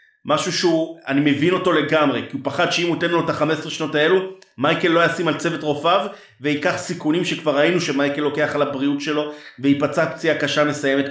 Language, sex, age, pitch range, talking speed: Hebrew, male, 30-49, 140-170 Hz, 200 wpm